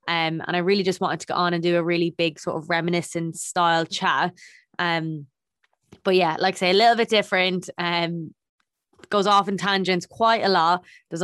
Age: 20-39